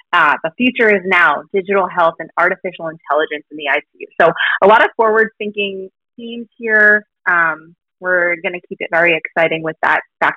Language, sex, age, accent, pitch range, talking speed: English, female, 30-49, American, 170-210 Hz, 180 wpm